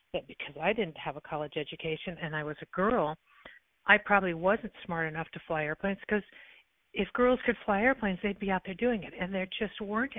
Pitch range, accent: 165-200 Hz, American